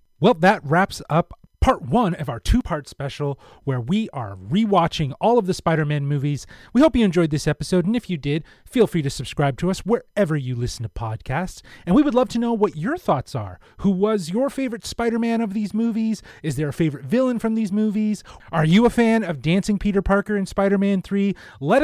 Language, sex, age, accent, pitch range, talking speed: English, male, 30-49, American, 140-205 Hz, 215 wpm